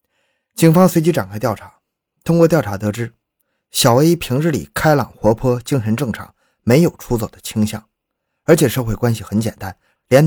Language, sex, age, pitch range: Chinese, male, 20-39, 105-155 Hz